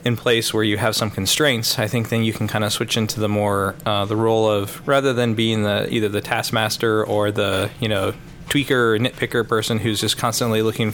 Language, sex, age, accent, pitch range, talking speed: English, male, 20-39, American, 105-125 Hz, 225 wpm